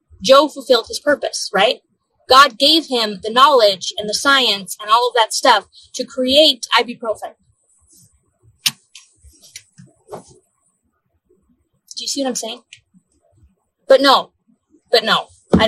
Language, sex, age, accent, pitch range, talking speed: English, female, 20-39, American, 195-265 Hz, 125 wpm